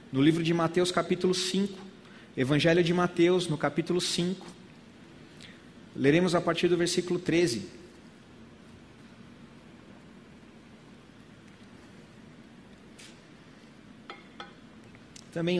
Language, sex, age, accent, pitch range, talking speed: Portuguese, male, 40-59, Brazilian, 150-190 Hz, 75 wpm